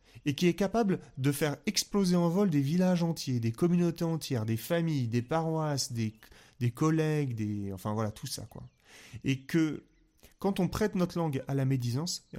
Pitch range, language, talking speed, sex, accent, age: 120-160 Hz, French, 185 wpm, male, French, 30-49